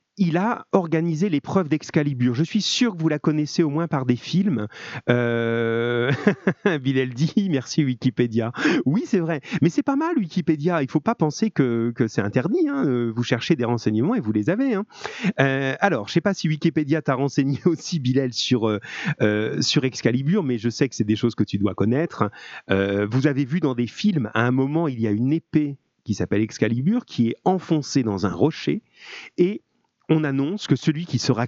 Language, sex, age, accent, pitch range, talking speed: French, male, 30-49, French, 115-160 Hz, 205 wpm